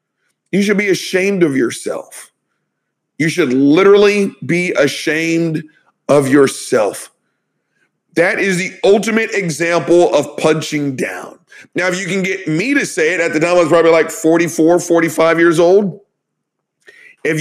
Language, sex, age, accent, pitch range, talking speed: English, male, 40-59, American, 180-230 Hz, 145 wpm